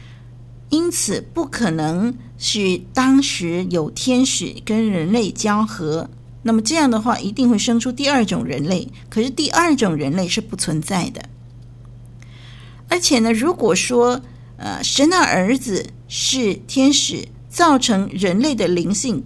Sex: female